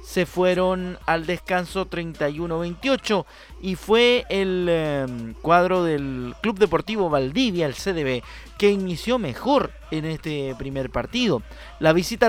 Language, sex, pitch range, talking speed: Spanish, male, 140-210 Hz, 120 wpm